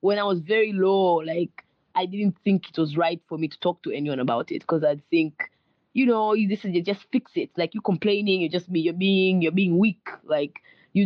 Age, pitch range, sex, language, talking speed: 20-39, 160-195 Hz, female, English, 240 wpm